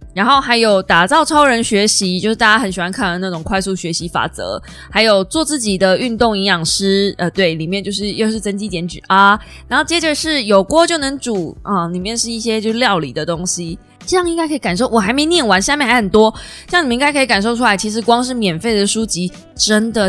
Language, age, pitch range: Chinese, 20-39, 185-235 Hz